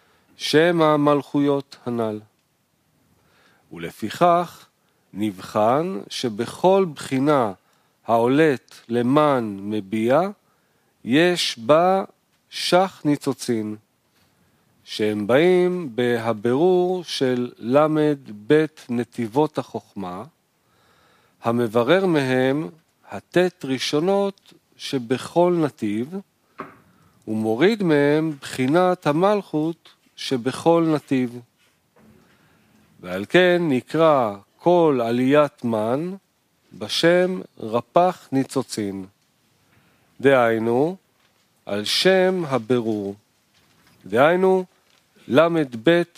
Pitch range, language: 120-170 Hz, Hebrew